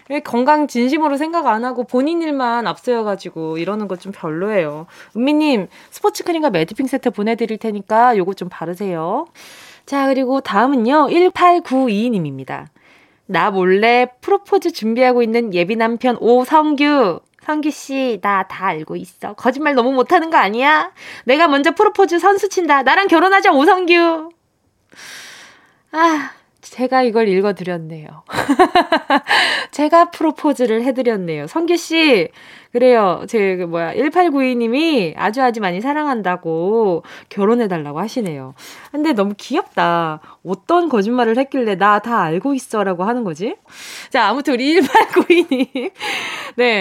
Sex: female